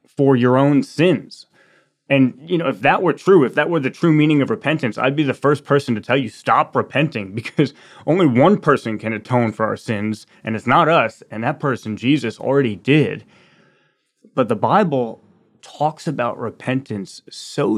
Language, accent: English, American